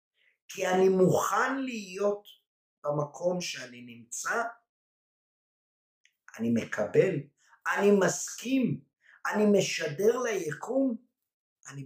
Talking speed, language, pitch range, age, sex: 75 wpm, Hebrew, 150-240 Hz, 50-69, male